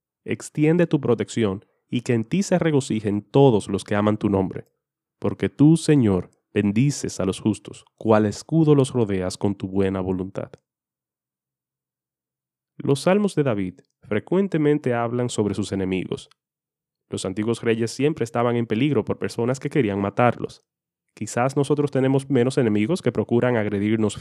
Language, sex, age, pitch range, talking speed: Spanish, male, 30-49, 100-140 Hz, 145 wpm